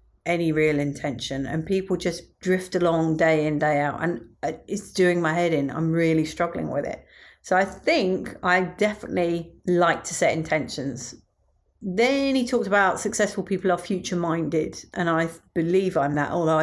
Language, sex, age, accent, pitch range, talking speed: English, female, 40-59, British, 165-225 Hz, 170 wpm